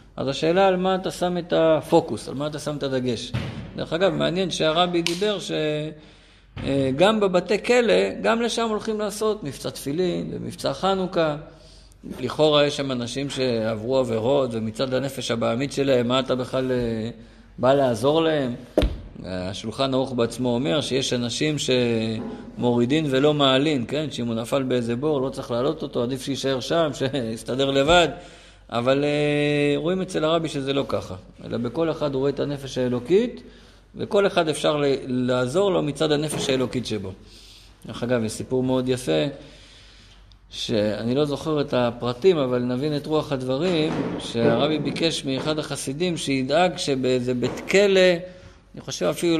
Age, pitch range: 50-69, 120-155 Hz